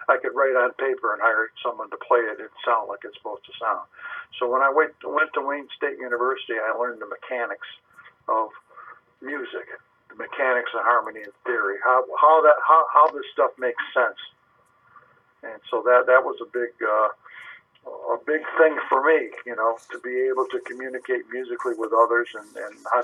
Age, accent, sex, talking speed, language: 60-79, American, male, 195 wpm, English